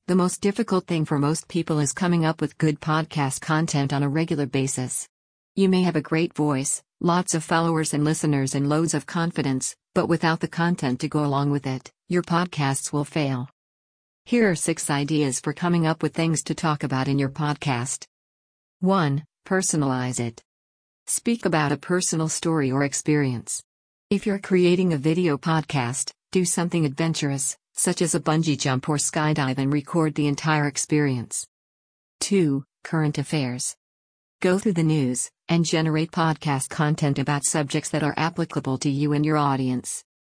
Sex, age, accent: female, 50-69, American